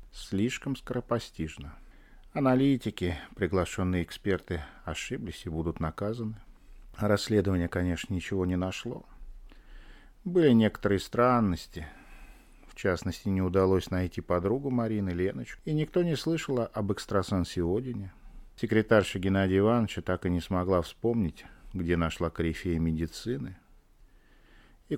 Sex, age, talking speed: male, 40-59, 110 wpm